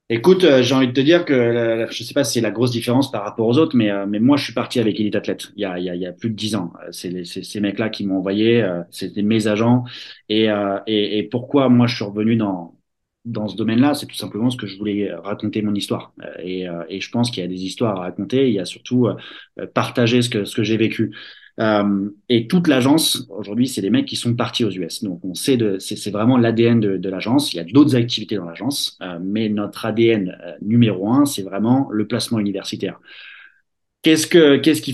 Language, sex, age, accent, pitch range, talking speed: French, male, 30-49, French, 100-120 Hz, 255 wpm